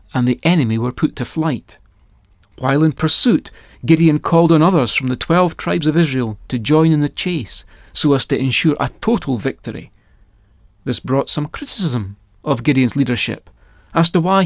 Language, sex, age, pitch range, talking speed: English, male, 40-59, 120-175 Hz, 175 wpm